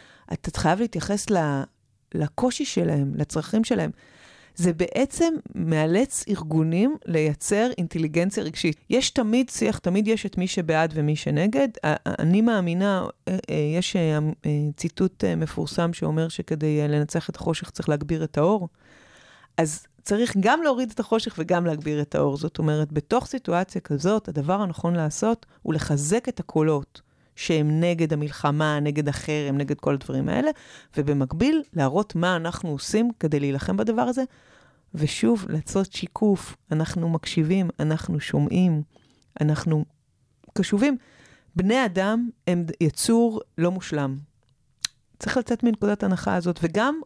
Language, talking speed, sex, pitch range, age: Hebrew, 125 wpm, female, 150-210 Hz, 30-49